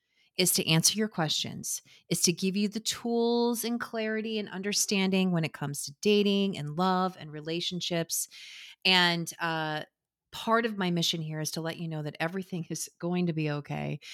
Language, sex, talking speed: English, female, 180 wpm